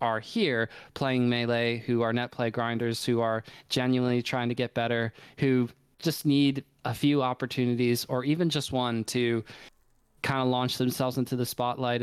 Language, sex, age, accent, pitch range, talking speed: English, male, 20-39, American, 120-130 Hz, 170 wpm